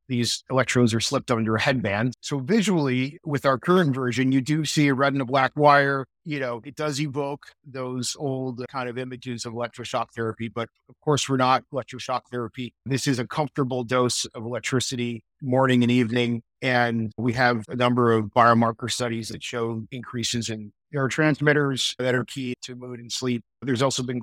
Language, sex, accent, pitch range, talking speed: English, male, American, 115-130 Hz, 185 wpm